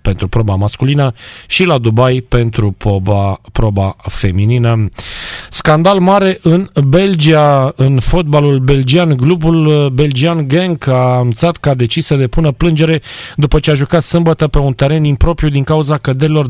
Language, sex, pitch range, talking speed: Romanian, male, 120-150 Hz, 145 wpm